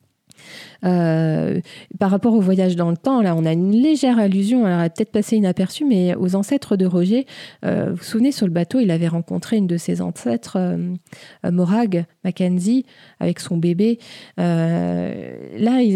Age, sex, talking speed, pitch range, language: 20-39, female, 170 wpm, 165-205 Hz, French